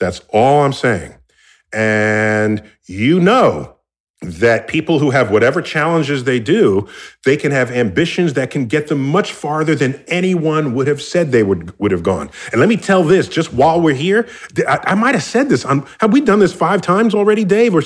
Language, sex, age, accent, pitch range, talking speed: English, male, 40-59, American, 135-200 Hz, 195 wpm